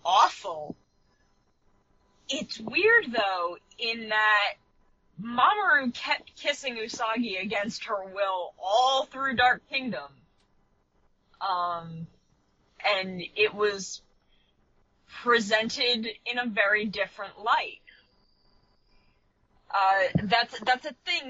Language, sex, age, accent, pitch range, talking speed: English, female, 20-39, American, 185-245 Hz, 90 wpm